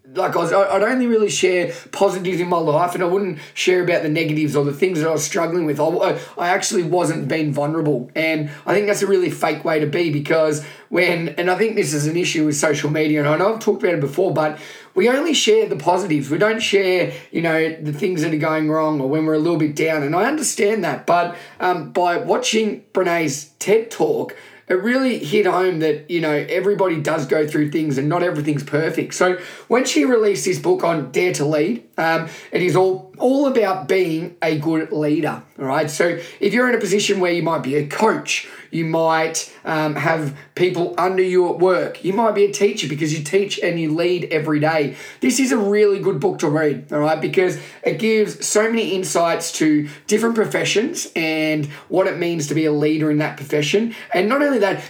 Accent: Australian